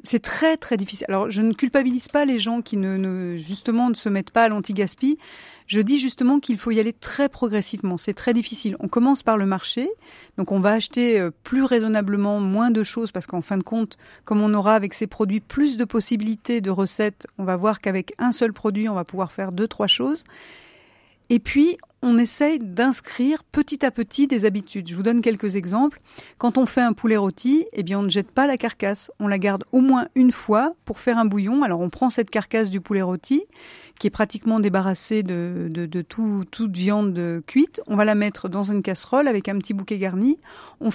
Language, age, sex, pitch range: French, 40-59, female, 200-250 Hz